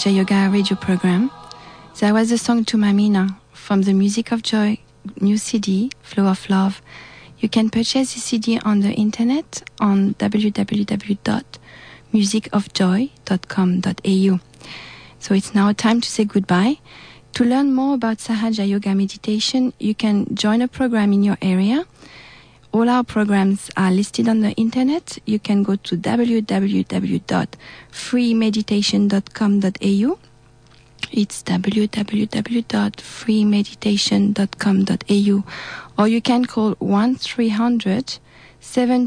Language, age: English, 40-59